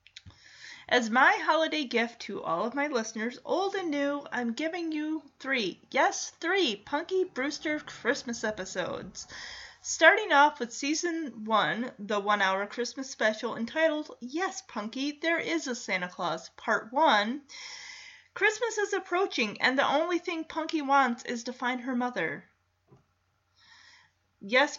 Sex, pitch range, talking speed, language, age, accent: female, 240-345 Hz, 140 wpm, English, 30-49, American